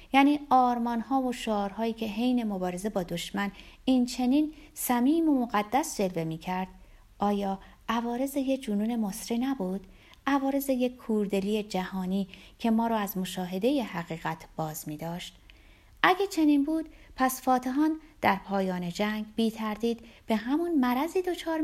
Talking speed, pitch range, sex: 130 wpm, 185-270 Hz, female